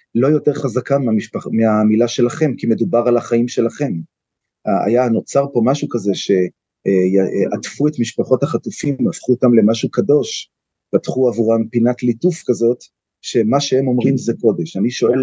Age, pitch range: 30-49, 110-140 Hz